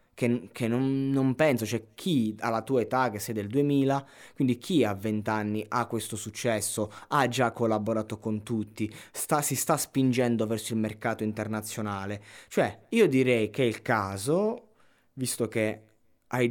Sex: male